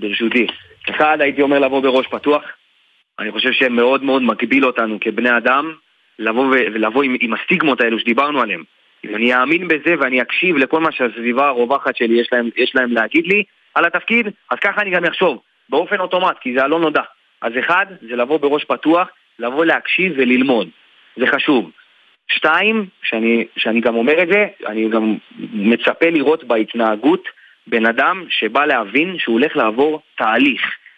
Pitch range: 120-170 Hz